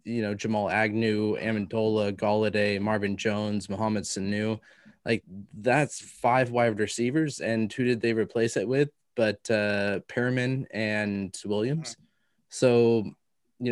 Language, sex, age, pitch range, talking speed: English, male, 20-39, 105-125 Hz, 125 wpm